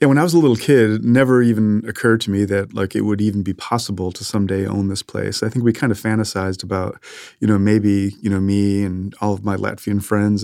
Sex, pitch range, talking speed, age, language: male, 95-105 Hz, 255 wpm, 30-49, English